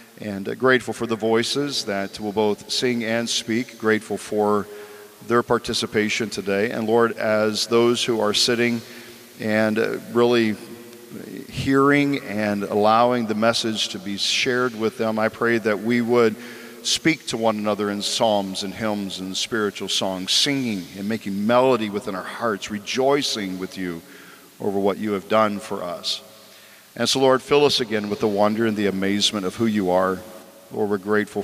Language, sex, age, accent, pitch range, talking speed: English, male, 50-69, American, 100-115 Hz, 165 wpm